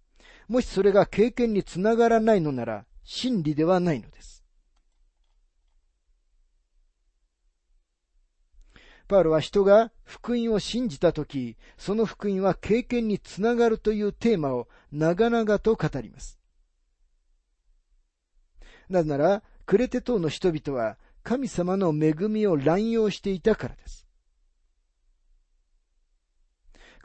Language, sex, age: Japanese, male, 40-59